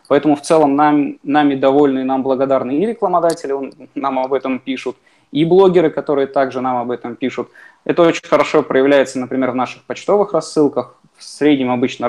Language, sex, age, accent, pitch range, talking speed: Russian, male, 20-39, native, 125-140 Hz, 180 wpm